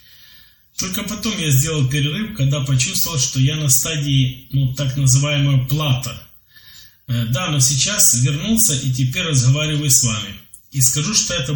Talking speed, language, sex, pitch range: 145 wpm, Polish, male, 125-145 Hz